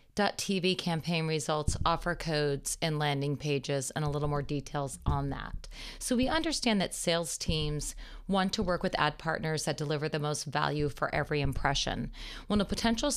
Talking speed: 175 wpm